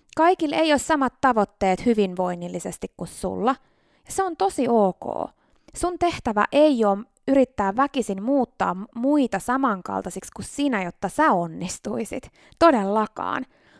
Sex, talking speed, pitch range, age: female, 115 wpm, 195-280 Hz, 20-39